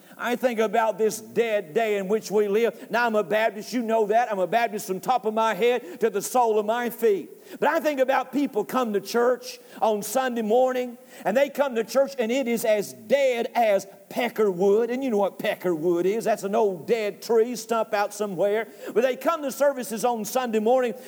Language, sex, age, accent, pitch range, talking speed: English, male, 50-69, American, 220-285 Hz, 215 wpm